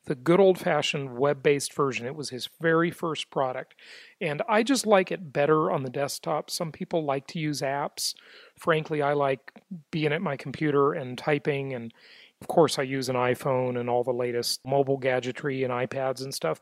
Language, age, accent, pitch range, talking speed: English, 40-59, American, 130-165 Hz, 190 wpm